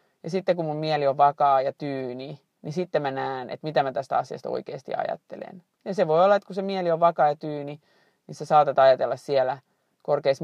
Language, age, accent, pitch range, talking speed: Finnish, 30-49, native, 140-185 Hz, 220 wpm